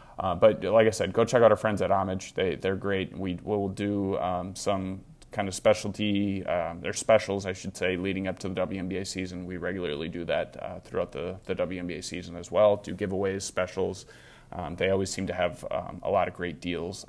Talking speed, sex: 220 wpm, male